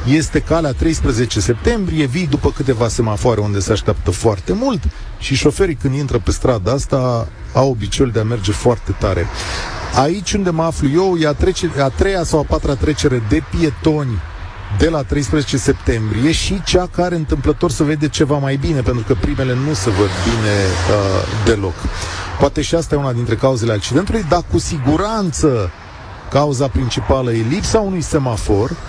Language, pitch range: Romanian, 105-155 Hz